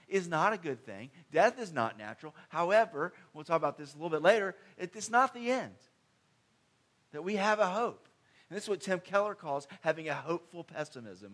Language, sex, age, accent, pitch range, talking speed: English, male, 40-59, American, 155-215 Hz, 200 wpm